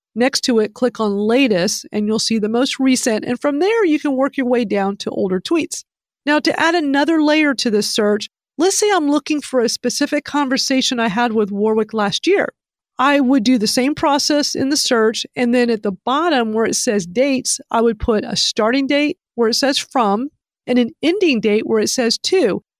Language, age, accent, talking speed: English, 40-59, American, 215 wpm